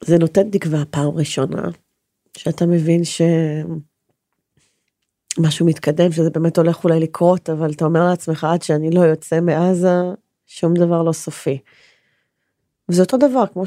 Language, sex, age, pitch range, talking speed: Hebrew, female, 30-49, 180-275 Hz, 135 wpm